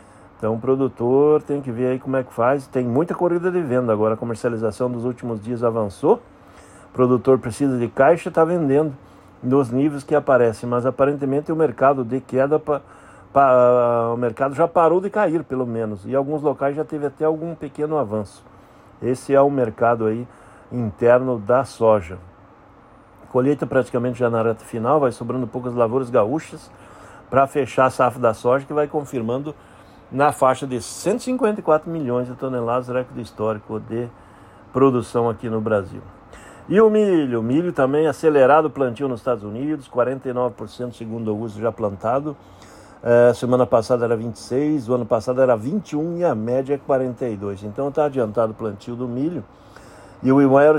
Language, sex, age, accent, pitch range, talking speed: Portuguese, male, 60-79, Brazilian, 115-140 Hz, 170 wpm